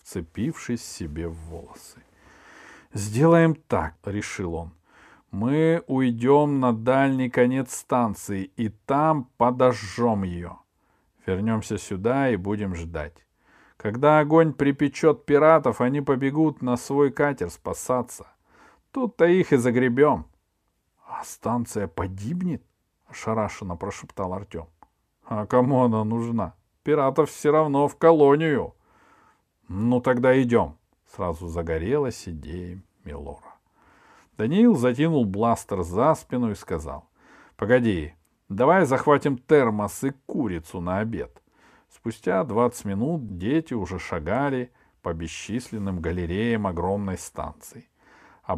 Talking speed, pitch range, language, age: 110 wpm, 95-135 Hz, Russian, 40-59